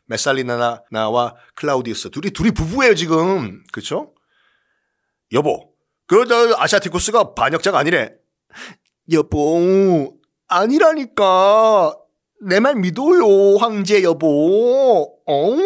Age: 40-59